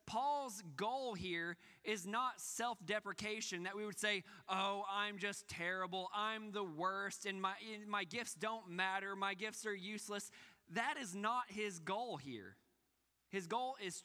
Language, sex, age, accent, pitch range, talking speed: English, male, 20-39, American, 175-210 Hz, 155 wpm